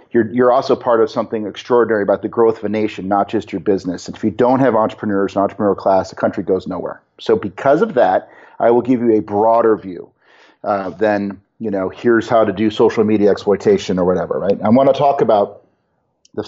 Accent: American